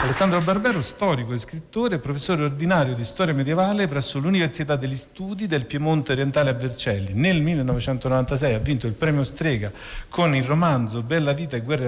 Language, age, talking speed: Italian, 50-69, 165 wpm